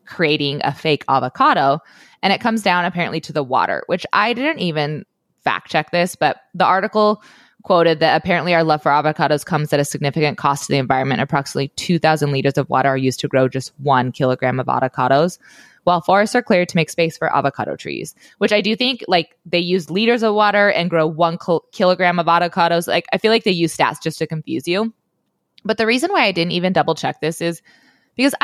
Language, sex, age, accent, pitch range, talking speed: English, female, 20-39, American, 160-220 Hz, 210 wpm